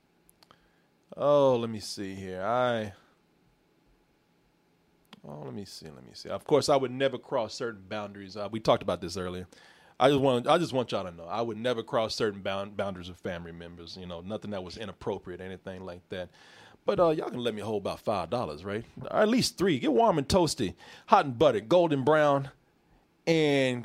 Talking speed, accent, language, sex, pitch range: 200 wpm, American, English, male, 110-155 Hz